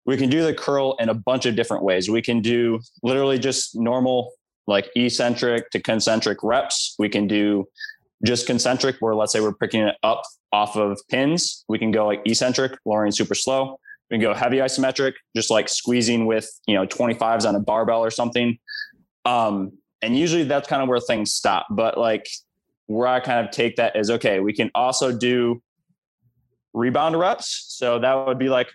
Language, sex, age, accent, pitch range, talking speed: English, male, 20-39, American, 115-130 Hz, 190 wpm